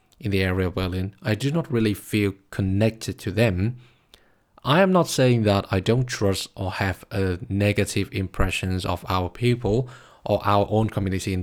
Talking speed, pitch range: 180 wpm, 95-120 Hz